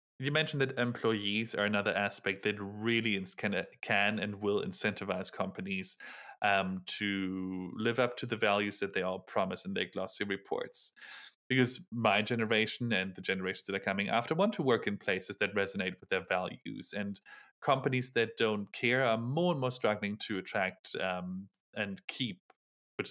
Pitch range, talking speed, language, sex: 100-135 Hz, 170 wpm, English, male